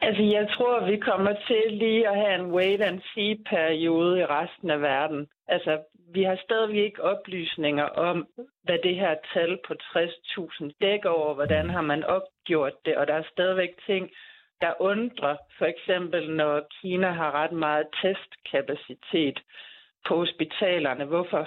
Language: Danish